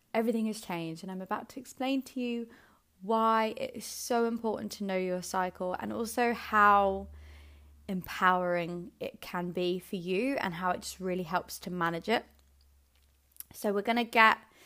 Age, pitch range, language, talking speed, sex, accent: 20-39, 180-220 Hz, English, 170 wpm, female, British